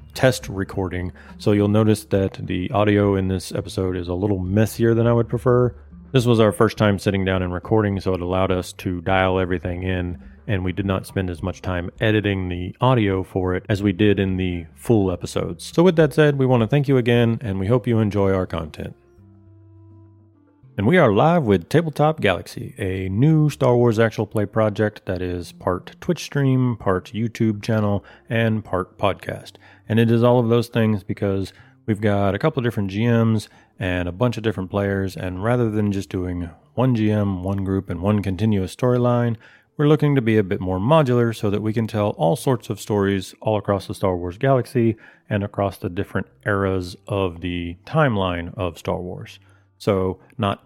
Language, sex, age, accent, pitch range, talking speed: English, male, 30-49, American, 95-115 Hz, 200 wpm